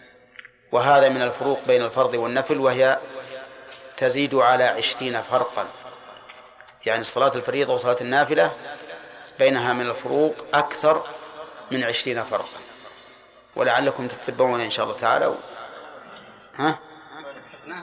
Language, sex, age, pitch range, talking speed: Arabic, male, 30-49, 125-150 Hz, 100 wpm